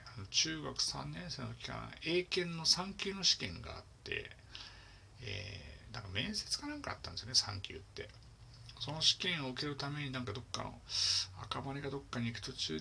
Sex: male